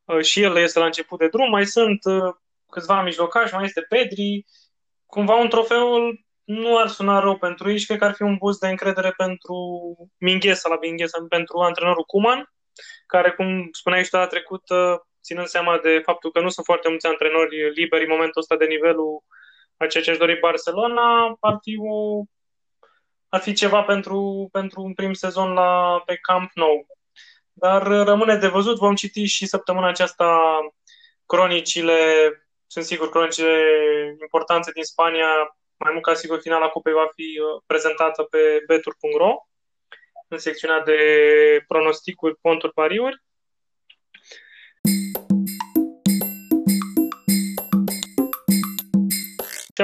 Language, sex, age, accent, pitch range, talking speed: Romanian, male, 20-39, native, 165-205 Hz, 135 wpm